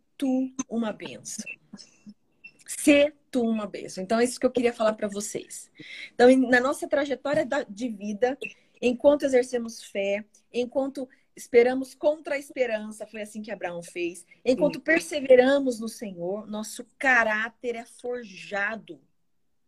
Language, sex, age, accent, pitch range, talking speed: Portuguese, female, 30-49, Brazilian, 200-250 Hz, 130 wpm